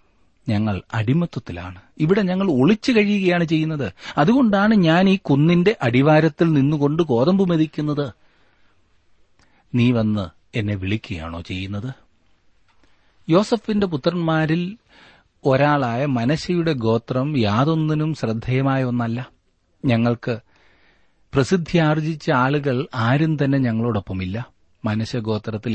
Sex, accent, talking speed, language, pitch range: male, native, 80 wpm, Malayalam, 100-155 Hz